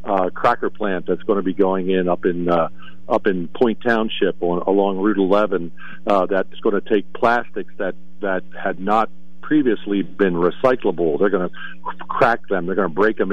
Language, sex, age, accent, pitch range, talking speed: English, male, 50-69, American, 95-115 Hz, 200 wpm